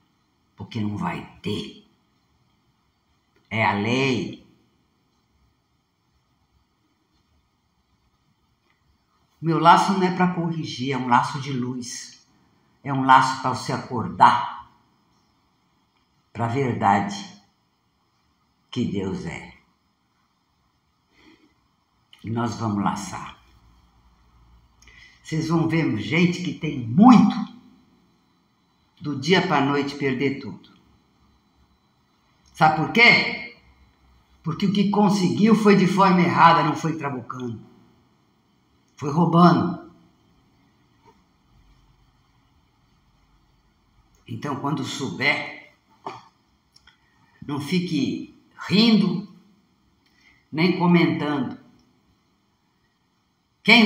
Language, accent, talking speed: Portuguese, Brazilian, 80 wpm